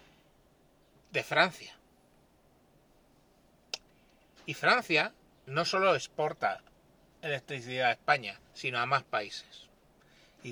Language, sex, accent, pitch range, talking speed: Spanish, male, Spanish, 135-195 Hz, 85 wpm